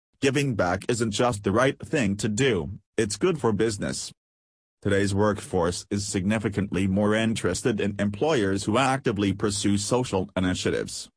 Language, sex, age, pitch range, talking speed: English, male, 40-59, 95-115 Hz, 140 wpm